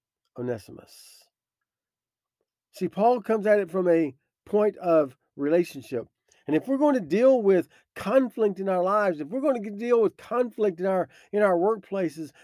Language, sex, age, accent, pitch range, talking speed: English, male, 50-69, American, 170-225 Hz, 165 wpm